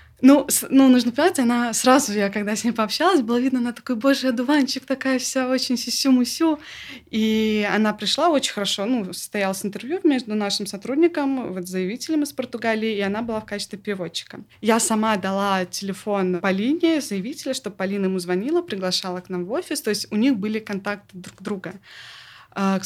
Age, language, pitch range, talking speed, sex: 20-39, Russian, 190-235 Hz, 180 wpm, female